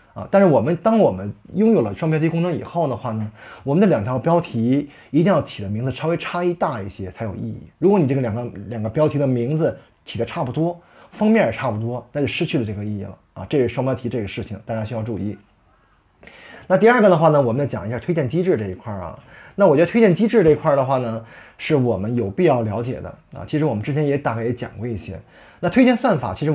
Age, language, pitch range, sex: 20-39, Chinese, 115-170 Hz, male